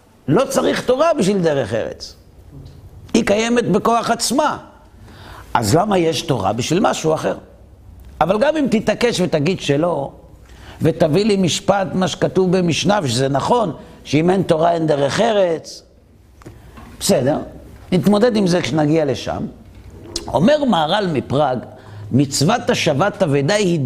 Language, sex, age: Hebrew, male, 60-79